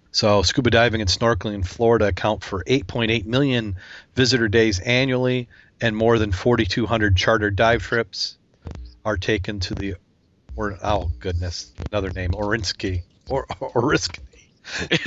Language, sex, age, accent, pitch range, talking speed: English, male, 40-59, American, 95-115 Hz, 135 wpm